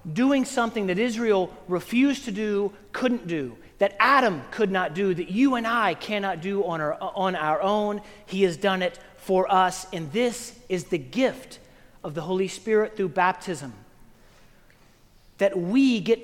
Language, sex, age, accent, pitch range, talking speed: English, male, 40-59, American, 180-225 Hz, 165 wpm